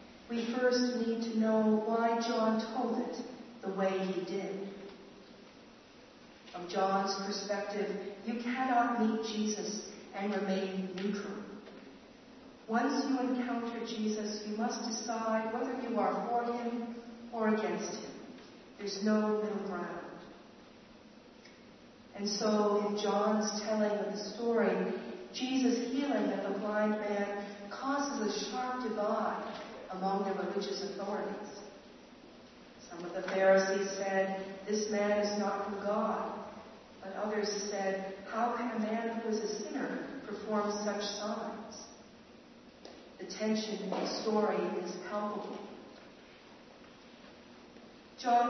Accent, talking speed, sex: American, 120 wpm, female